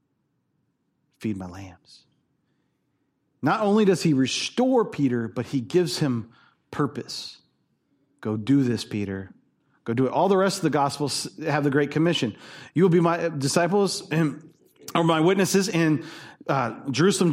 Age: 40-59